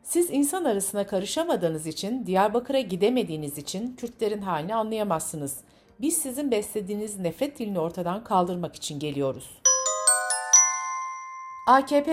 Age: 60-79